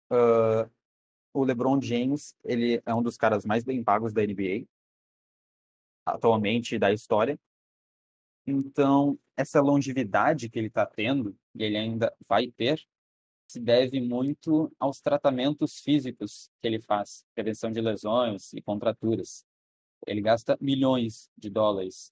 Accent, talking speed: Brazilian, 130 wpm